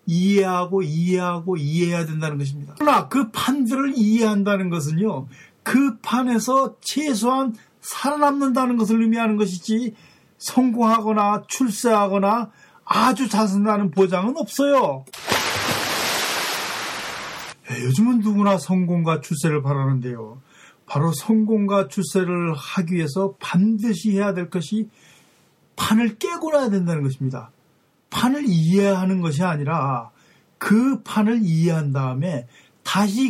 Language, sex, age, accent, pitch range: Korean, male, 40-59, native, 155-220 Hz